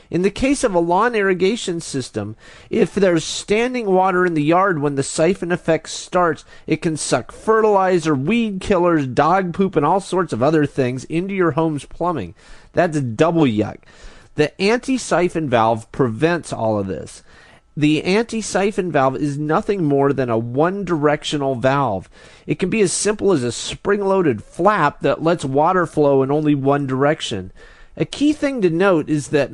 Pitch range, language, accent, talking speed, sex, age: 135-185 Hz, English, American, 170 wpm, male, 30-49